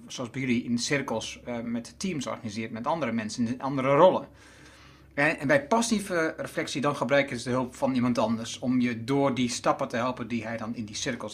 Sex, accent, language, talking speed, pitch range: male, Dutch, Dutch, 205 wpm, 115-155 Hz